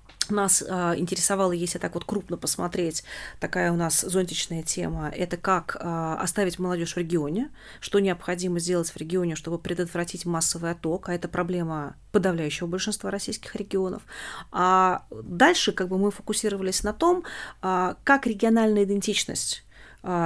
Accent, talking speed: native, 135 wpm